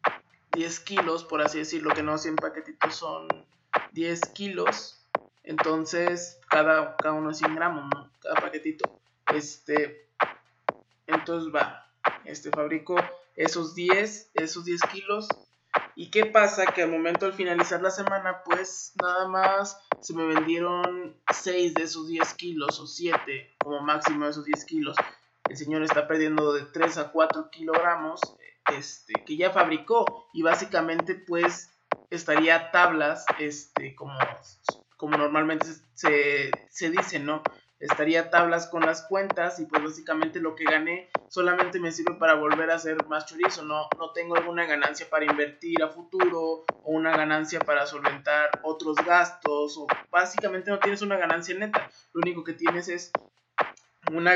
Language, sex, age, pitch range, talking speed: Spanish, male, 20-39, 155-180 Hz, 150 wpm